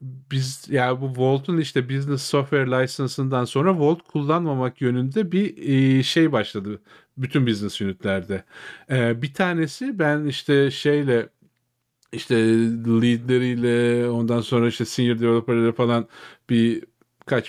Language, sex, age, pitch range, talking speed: Turkish, male, 40-59, 120-145 Hz, 115 wpm